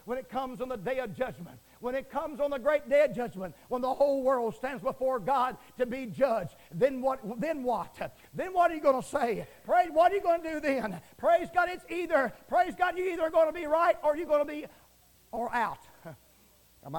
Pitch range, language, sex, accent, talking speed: 240-275 Hz, English, male, American, 235 wpm